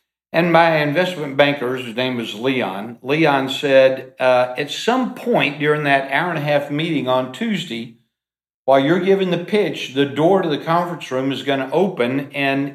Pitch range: 135-175 Hz